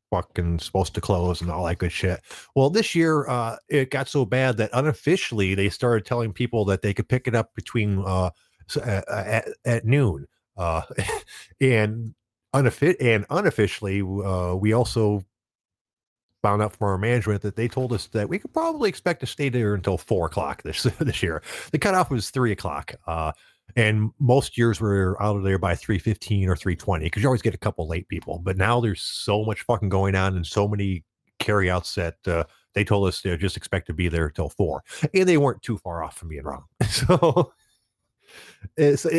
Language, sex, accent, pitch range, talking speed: English, male, American, 90-125 Hz, 195 wpm